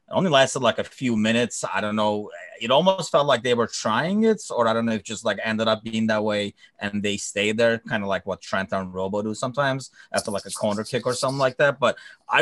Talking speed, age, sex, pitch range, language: 260 wpm, 30-49, male, 100-125 Hz, English